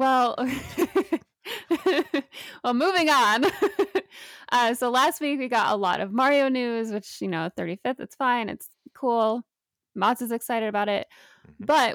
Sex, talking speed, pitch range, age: female, 145 wpm, 200-265 Hz, 10-29